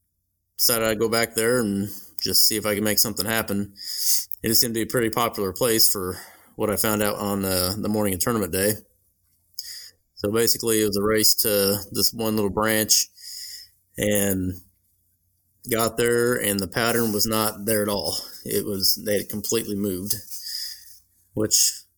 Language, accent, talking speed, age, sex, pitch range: English, American, 175 wpm, 20-39, male, 95-110 Hz